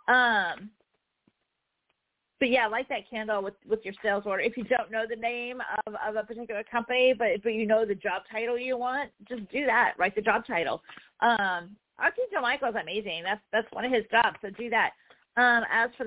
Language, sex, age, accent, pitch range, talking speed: English, female, 40-59, American, 220-260 Hz, 205 wpm